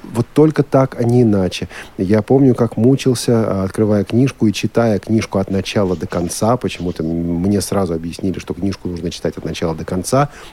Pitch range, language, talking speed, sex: 95-125 Hz, Russian, 175 wpm, male